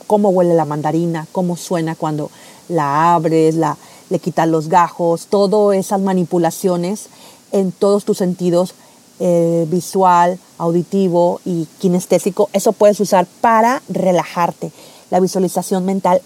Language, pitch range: Spanish, 180-255 Hz